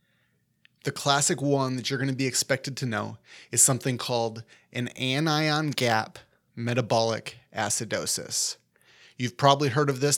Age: 30-49